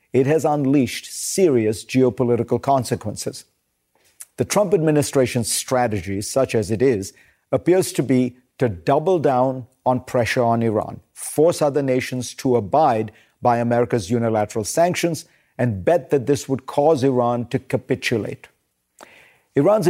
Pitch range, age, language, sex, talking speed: 120-145 Hz, 50-69, English, male, 130 wpm